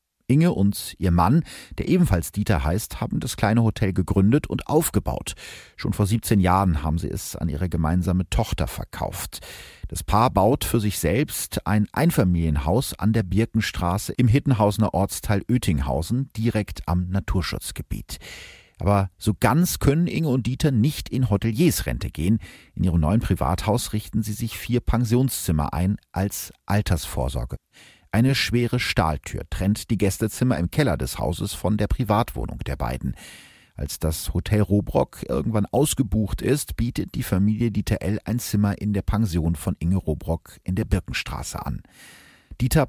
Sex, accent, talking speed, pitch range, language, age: male, German, 150 wpm, 90-115 Hz, German, 40-59